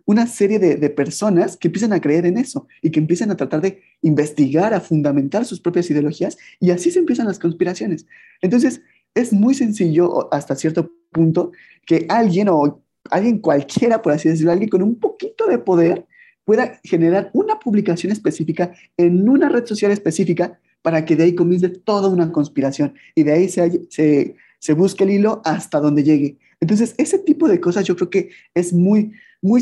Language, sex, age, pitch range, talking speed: Spanish, male, 30-49, 160-210 Hz, 185 wpm